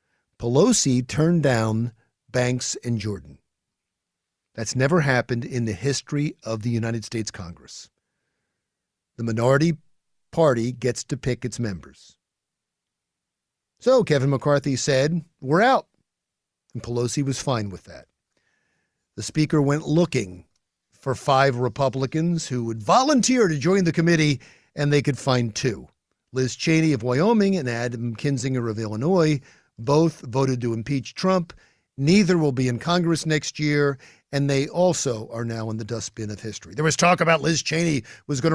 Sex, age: male, 50-69